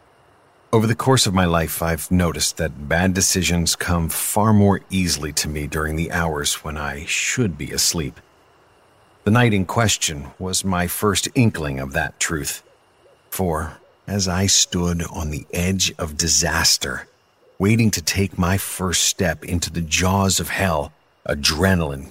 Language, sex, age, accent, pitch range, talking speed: English, male, 50-69, American, 75-95 Hz, 155 wpm